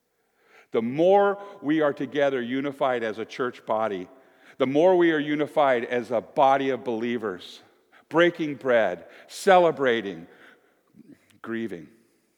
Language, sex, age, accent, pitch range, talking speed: English, male, 50-69, American, 100-155 Hz, 115 wpm